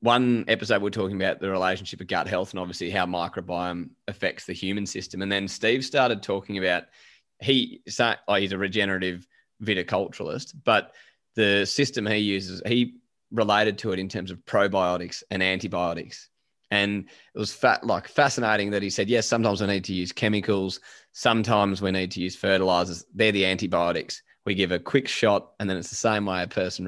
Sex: male